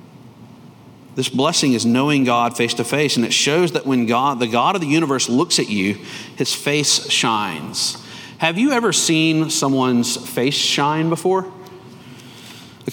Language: English